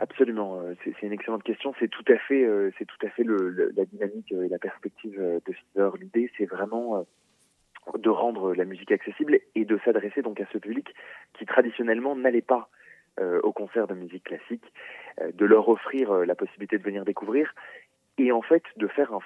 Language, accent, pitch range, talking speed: French, French, 105-150 Hz, 205 wpm